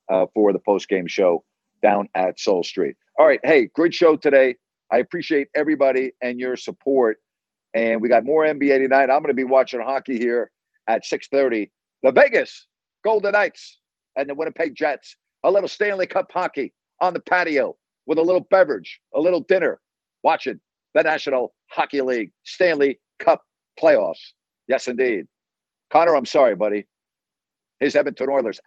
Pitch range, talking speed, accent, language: 125-165 Hz, 160 wpm, American, English